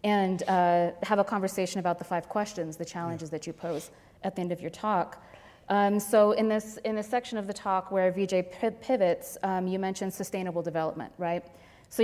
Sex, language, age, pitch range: female, English, 20-39, 175-210 Hz